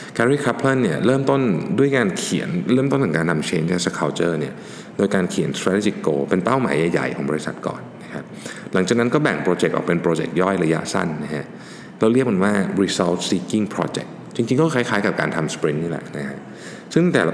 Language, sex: Thai, male